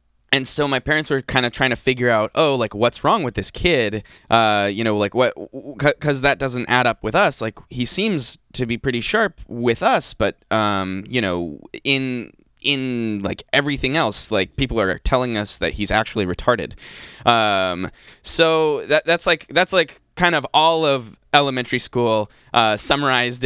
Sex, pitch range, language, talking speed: male, 105-135 Hz, English, 185 wpm